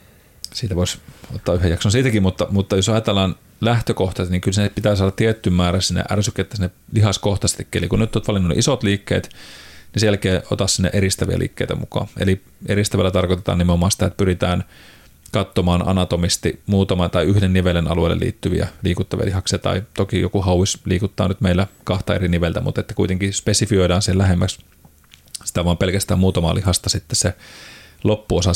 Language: Finnish